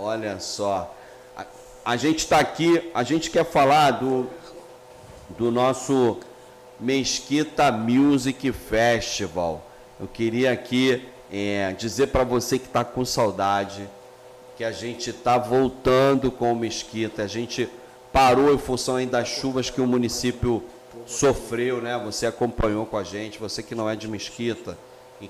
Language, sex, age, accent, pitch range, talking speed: Portuguese, male, 40-59, Brazilian, 115-130 Hz, 145 wpm